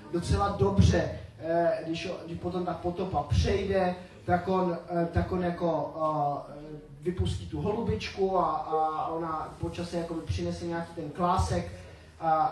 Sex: male